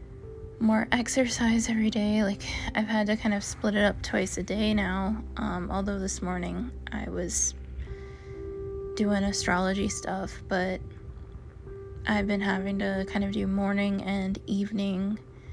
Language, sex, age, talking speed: English, female, 20-39, 145 wpm